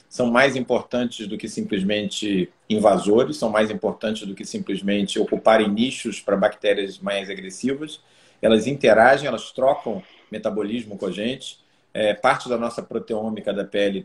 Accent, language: Brazilian, Portuguese